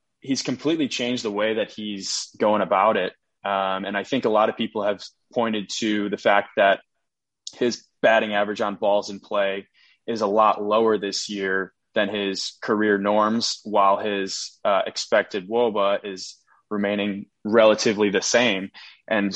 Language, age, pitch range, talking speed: English, 20-39, 100-115 Hz, 160 wpm